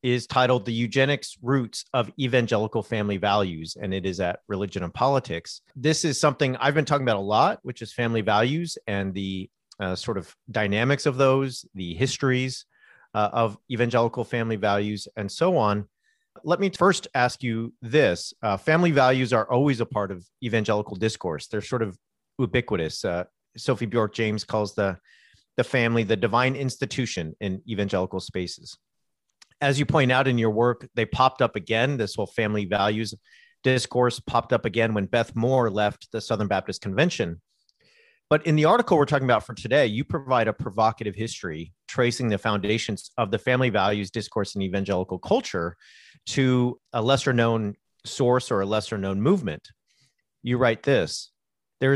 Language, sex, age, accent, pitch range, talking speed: English, male, 40-59, American, 105-130 Hz, 170 wpm